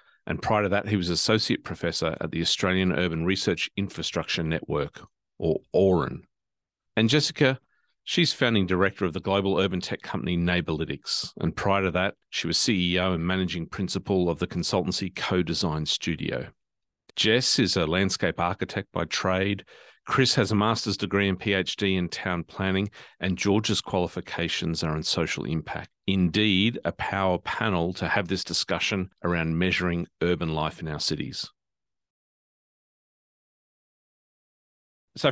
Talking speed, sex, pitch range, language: 145 wpm, male, 85-100 Hz, English